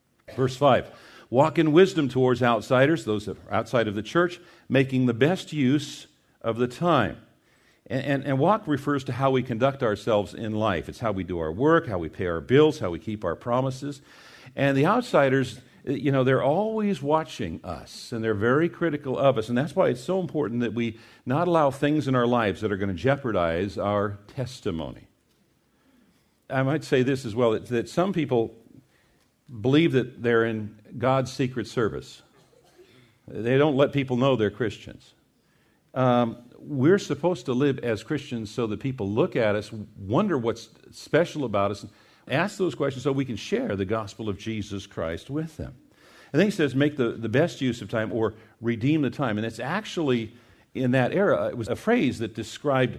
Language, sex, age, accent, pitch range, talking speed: English, male, 50-69, American, 110-145 Hz, 190 wpm